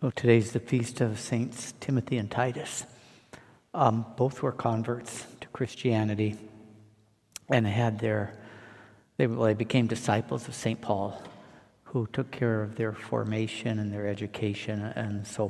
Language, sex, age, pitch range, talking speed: English, male, 60-79, 110-120 Hz, 135 wpm